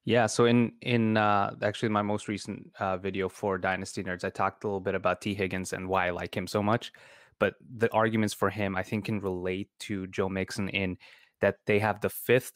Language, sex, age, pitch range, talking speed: English, male, 20-39, 100-115 Hz, 225 wpm